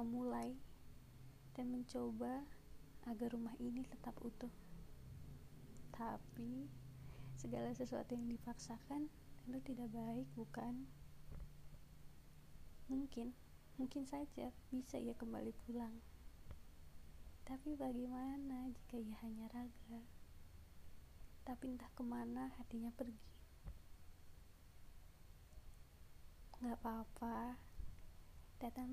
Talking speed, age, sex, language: 80 wpm, 20-39, female, Indonesian